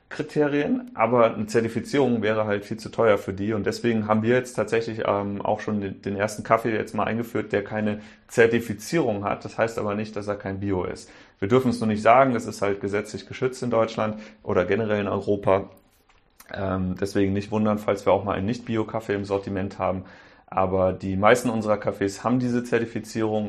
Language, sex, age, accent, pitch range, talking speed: German, male, 30-49, German, 100-120 Hz, 190 wpm